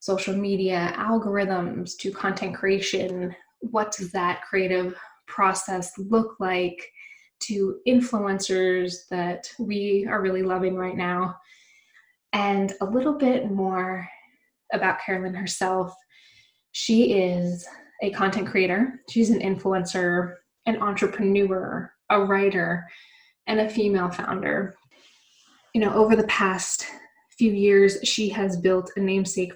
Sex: female